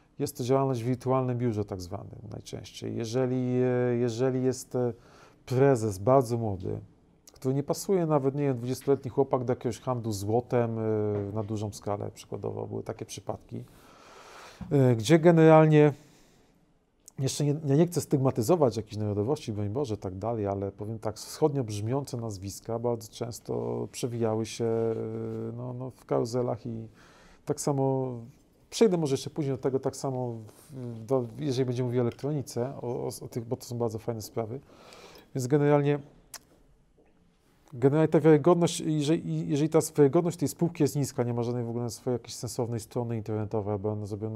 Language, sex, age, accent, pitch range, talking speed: Polish, male, 40-59, native, 115-140 Hz, 150 wpm